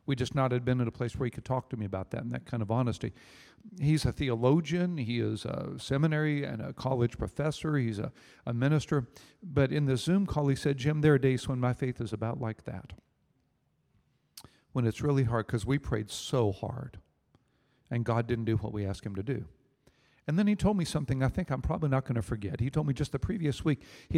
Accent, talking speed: American, 235 wpm